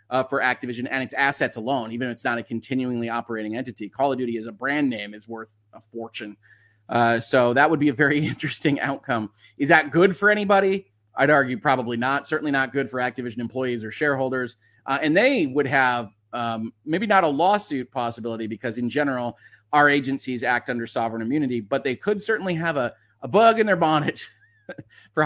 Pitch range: 120-180 Hz